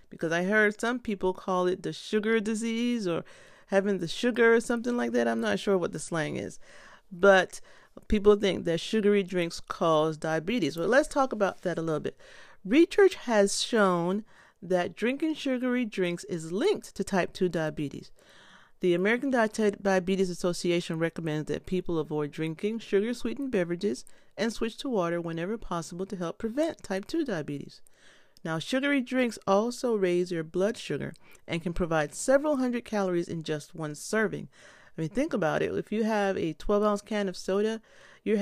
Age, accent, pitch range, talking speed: 40-59, American, 175-225 Hz, 170 wpm